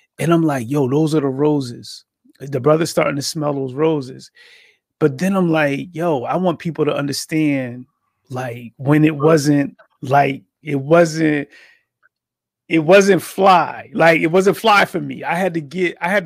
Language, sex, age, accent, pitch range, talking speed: English, male, 30-49, American, 145-185 Hz, 175 wpm